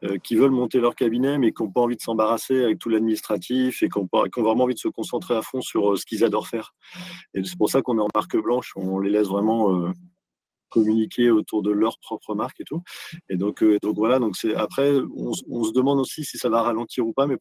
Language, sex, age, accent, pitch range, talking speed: French, male, 40-59, French, 105-125 Hz, 245 wpm